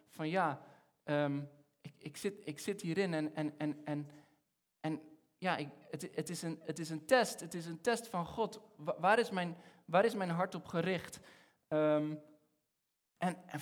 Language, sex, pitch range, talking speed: Dutch, male, 150-195 Hz, 125 wpm